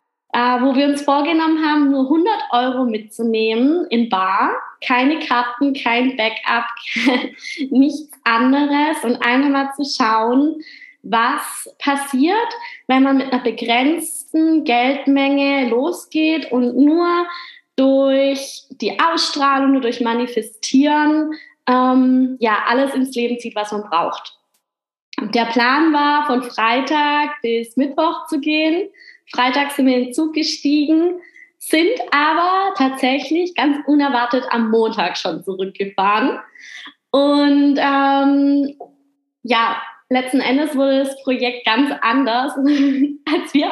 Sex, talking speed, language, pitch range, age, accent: female, 120 wpm, German, 235-295 Hz, 20-39, German